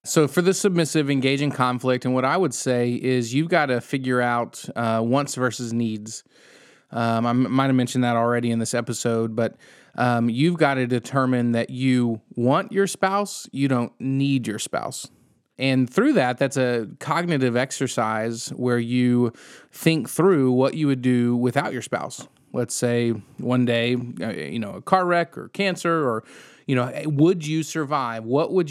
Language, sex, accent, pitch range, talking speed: English, male, American, 120-150 Hz, 175 wpm